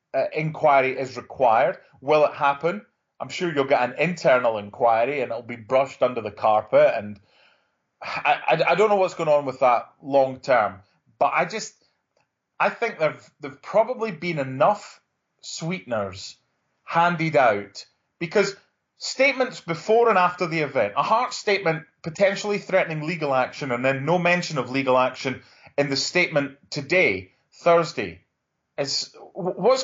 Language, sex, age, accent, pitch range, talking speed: English, male, 20-39, British, 135-195 Hz, 150 wpm